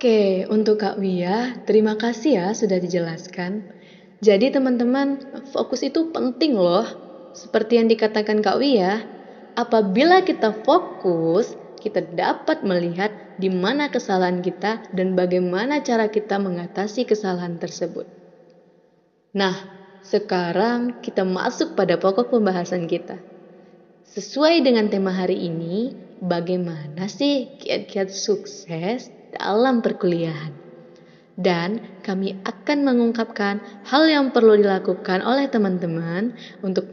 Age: 20-39